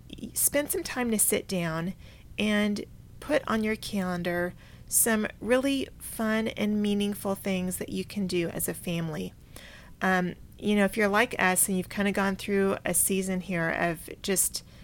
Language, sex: English, female